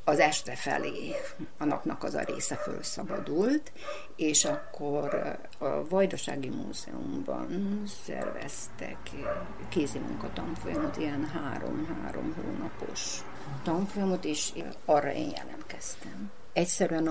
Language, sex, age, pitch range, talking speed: Hungarian, female, 50-69, 150-195 Hz, 85 wpm